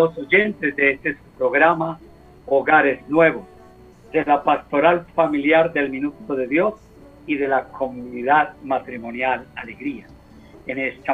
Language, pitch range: Spanish, 135-165 Hz